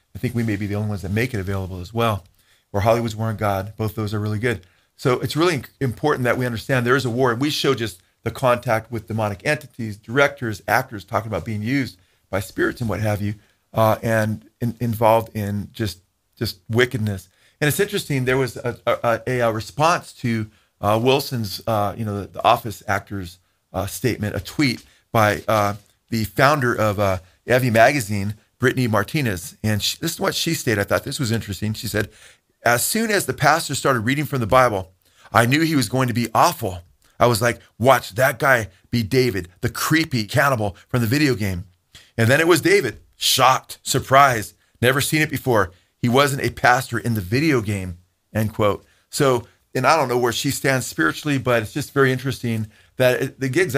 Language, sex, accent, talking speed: English, male, American, 200 wpm